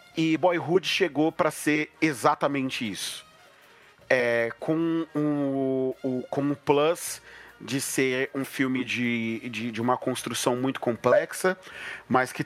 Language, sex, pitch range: Portuguese, male, 135-165 Hz